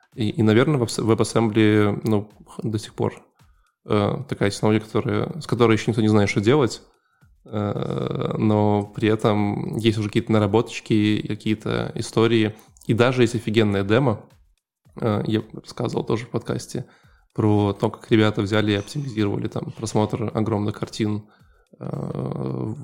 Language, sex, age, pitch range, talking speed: Russian, male, 20-39, 105-120 Hz, 145 wpm